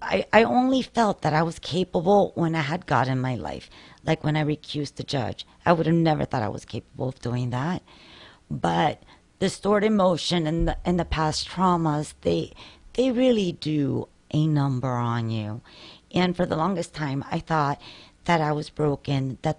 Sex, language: female, English